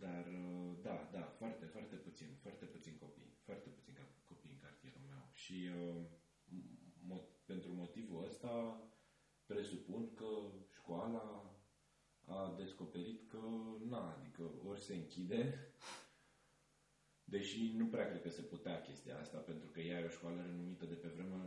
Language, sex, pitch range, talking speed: Romanian, male, 85-100 Hz, 145 wpm